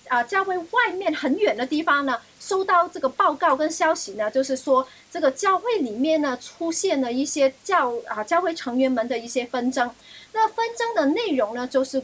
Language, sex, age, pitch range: Chinese, female, 30-49, 250-345 Hz